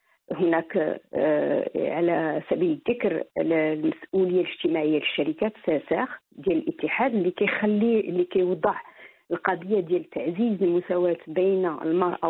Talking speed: 95 wpm